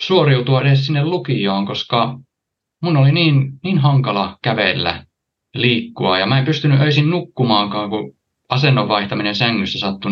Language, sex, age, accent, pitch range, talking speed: Finnish, male, 20-39, native, 100-135 Hz, 130 wpm